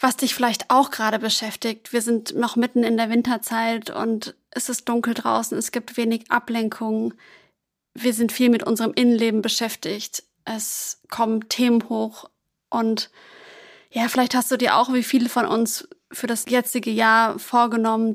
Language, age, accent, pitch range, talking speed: German, 20-39, German, 225-245 Hz, 160 wpm